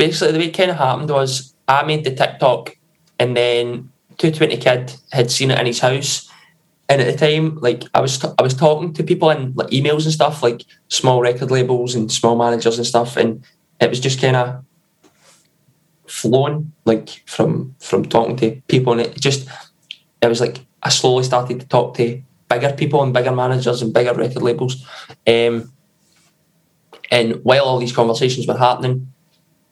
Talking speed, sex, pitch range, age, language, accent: 180 wpm, male, 120-150 Hz, 20-39, English, British